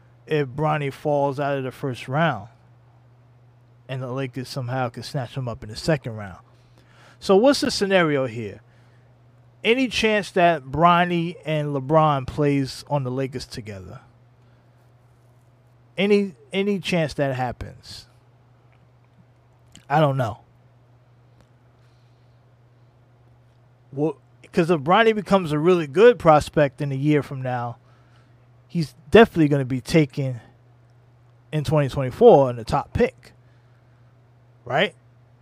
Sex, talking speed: male, 120 wpm